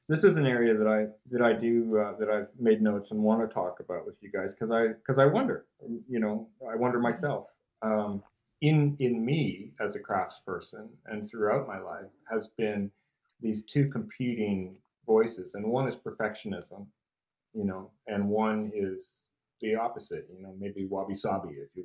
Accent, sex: American, male